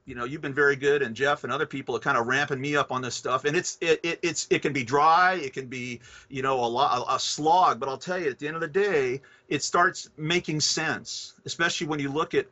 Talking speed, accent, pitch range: 275 wpm, American, 130-165 Hz